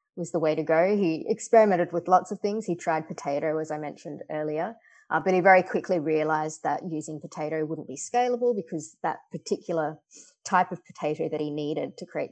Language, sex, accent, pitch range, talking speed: English, female, Australian, 155-185 Hz, 200 wpm